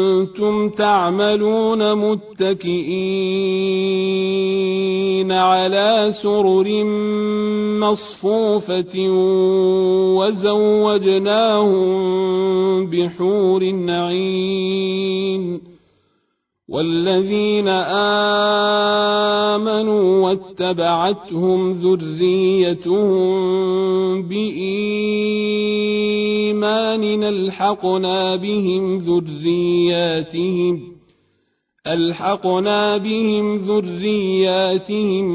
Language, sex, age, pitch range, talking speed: Arabic, male, 40-59, 185-205 Hz, 35 wpm